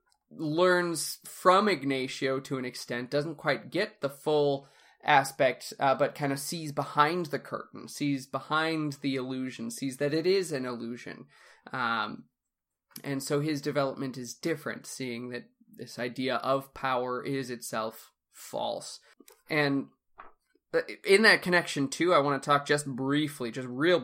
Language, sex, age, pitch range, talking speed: English, male, 20-39, 135-155 Hz, 145 wpm